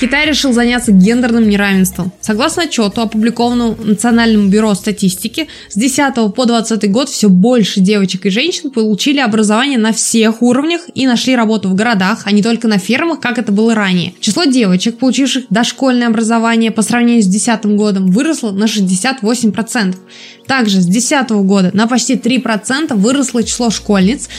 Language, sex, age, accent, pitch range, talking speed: Russian, female, 20-39, native, 210-250 Hz, 155 wpm